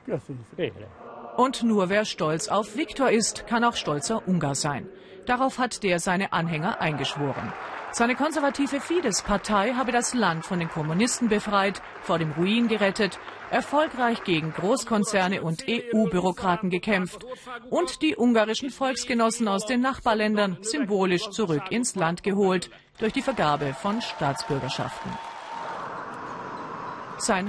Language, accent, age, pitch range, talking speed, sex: German, German, 40-59, 170-235 Hz, 120 wpm, female